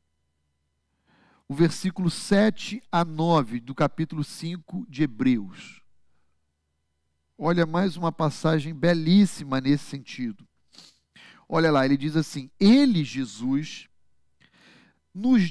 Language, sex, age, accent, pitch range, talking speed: Portuguese, male, 40-59, Brazilian, 135-215 Hz, 95 wpm